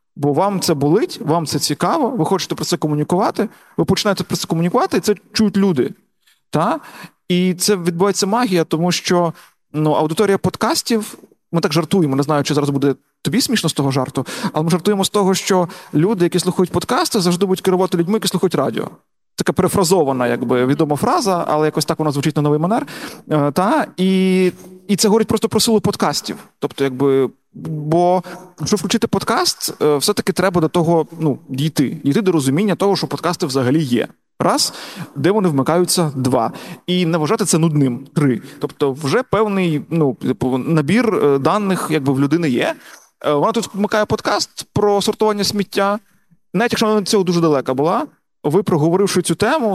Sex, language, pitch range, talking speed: male, Ukrainian, 150-200 Hz, 175 wpm